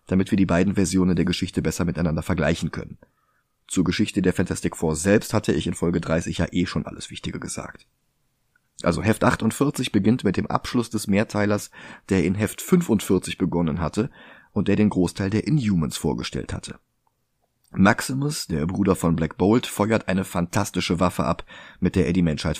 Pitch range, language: 85-110 Hz, German